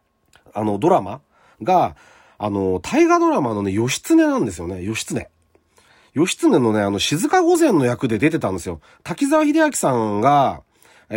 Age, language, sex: 40-59, Japanese, male